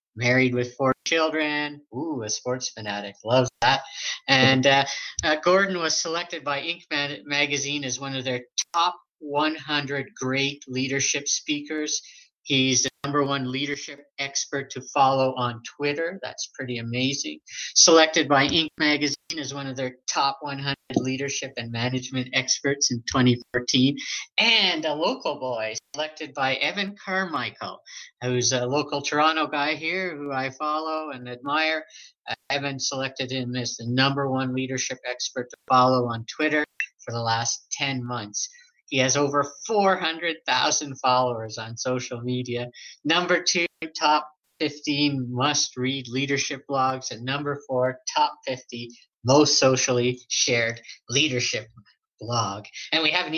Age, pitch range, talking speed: 50-69, 125-150 Hz, 140 wpm